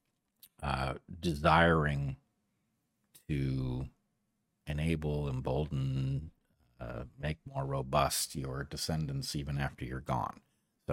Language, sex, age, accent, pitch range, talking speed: English, male, 40-59, American, 65-85 Hz, 80 wpm